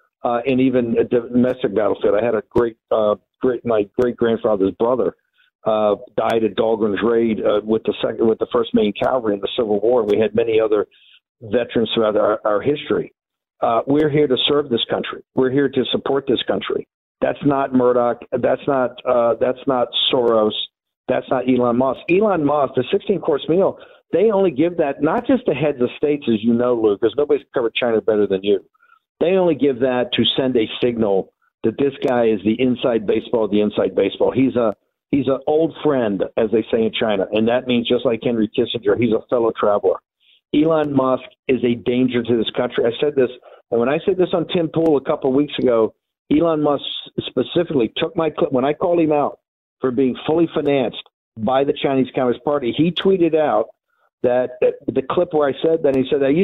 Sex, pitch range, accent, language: male, 120-165 Hz, American, English